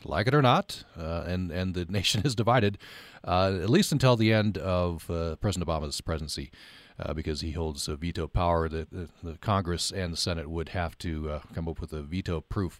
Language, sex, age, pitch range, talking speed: English, male, 40-59, 85-110 Hz, 205 wpm